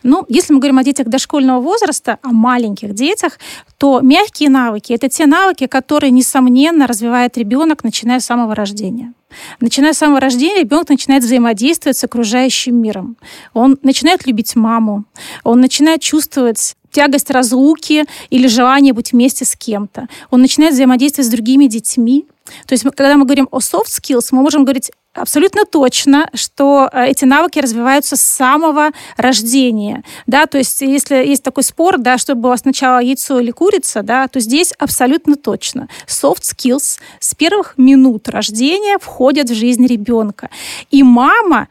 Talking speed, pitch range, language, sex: 150 wpm, 250-300 Hz, Russian, female